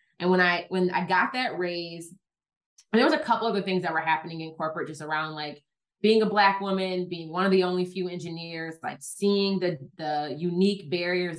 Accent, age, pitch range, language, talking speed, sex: American, 20-39, 165-200 Hz, English, 210 wpm, female